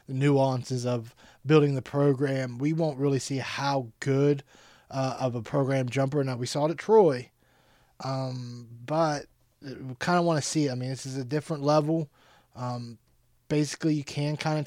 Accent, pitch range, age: American, 125-150 Hz, 20-39